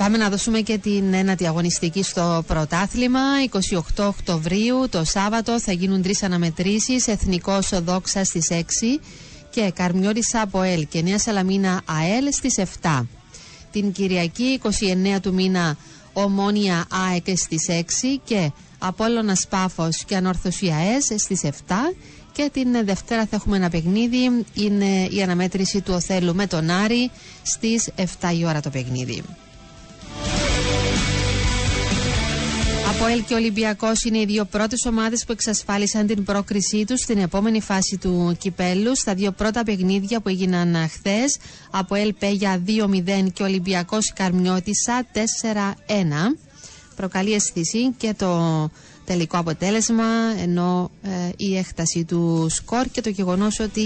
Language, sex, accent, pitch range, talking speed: Greek, female, native, 175-215 Hz, 135 wpm